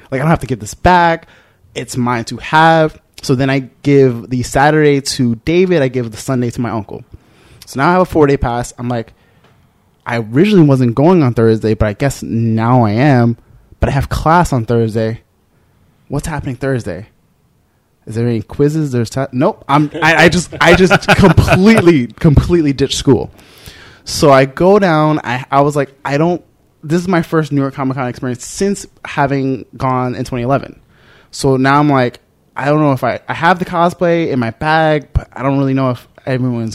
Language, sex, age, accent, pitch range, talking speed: English, male, 20-39, American, 120-155 Hz, 200 wpm